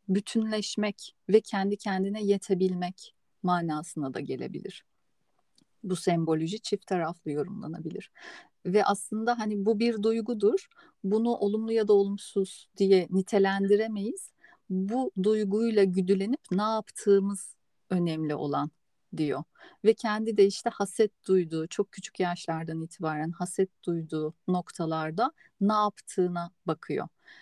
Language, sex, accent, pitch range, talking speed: Turkish, female, native, 180-215 Hz, 110 wpm